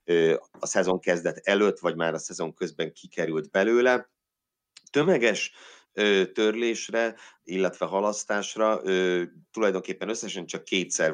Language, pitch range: Hungarian, 80-95 Hz